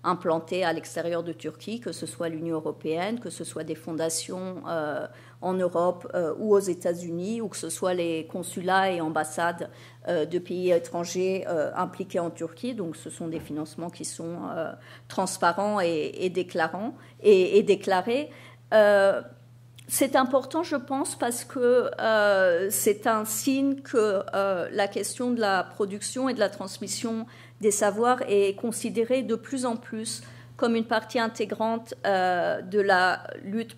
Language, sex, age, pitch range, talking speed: French, female, 40-59, 170-225 Hz, 160 wpm